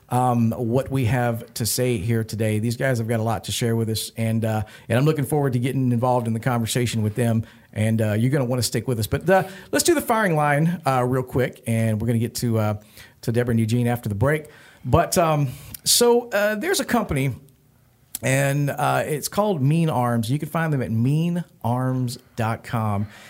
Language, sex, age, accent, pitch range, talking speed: English, male, 40-59, American, 115-150 Hz, 220 wpm